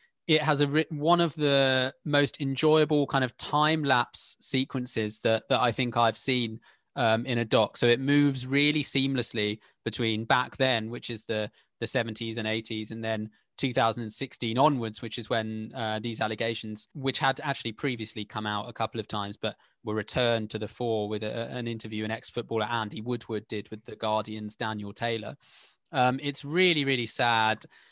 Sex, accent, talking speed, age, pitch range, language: male, British, 180 wpm, 20-39, 110-135 Hz, English